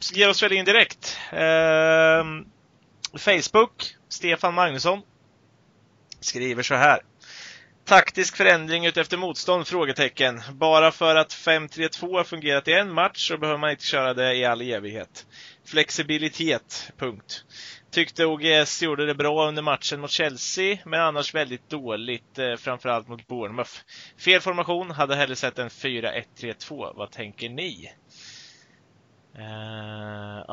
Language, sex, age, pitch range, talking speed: Swedish, male, 30-49, 120-155 Hz, 125 wpm